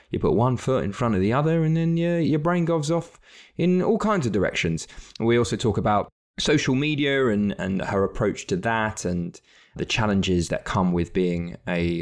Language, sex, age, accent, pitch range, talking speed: English, male, 20-39, British, 90-130 Hz, 205 wpm